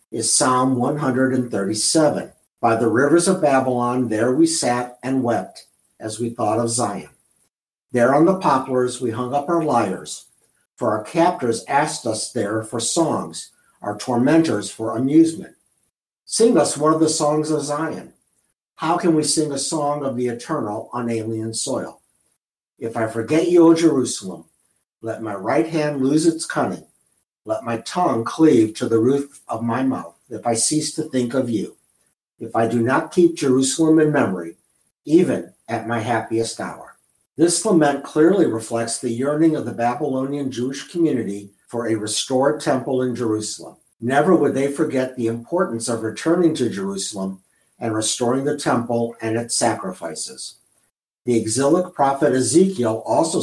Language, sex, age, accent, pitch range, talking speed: English, male, 60-79, American, 115-150 Hz, 160 wpm